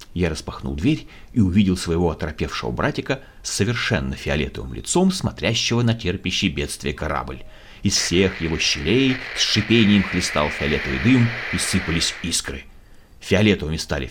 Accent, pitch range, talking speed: native, 75-115 Hz, 130 wpm